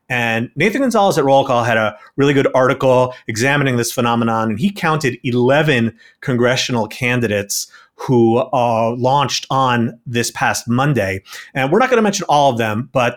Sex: male